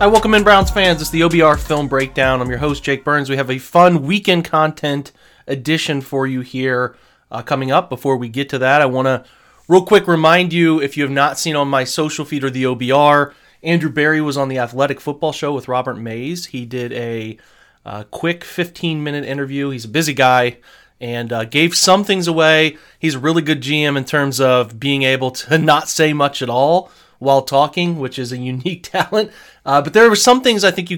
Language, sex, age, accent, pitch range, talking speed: English, male, 30-49, American, 130-165 Hz, 215 wpm